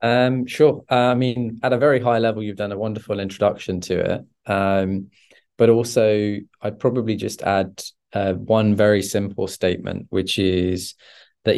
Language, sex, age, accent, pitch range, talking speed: English, male, 20-39, British, 95-110 Hz, 165 wpm